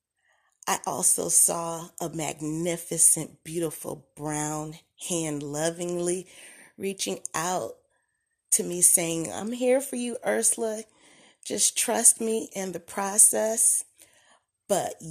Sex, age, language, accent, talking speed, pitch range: female, 30-49, English, American, 105 wpm, 155-195 Hz